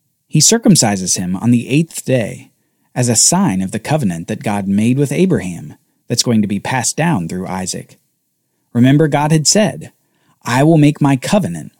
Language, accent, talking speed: English, American, 180 wpm